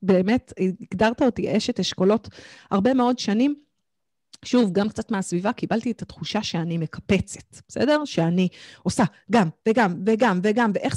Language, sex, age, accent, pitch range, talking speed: Hebrew, female, 30-49, native, 195-270 Hz, 140 wpm